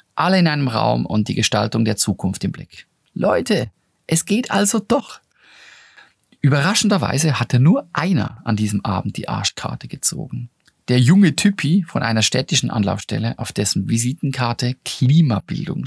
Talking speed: 140 wpm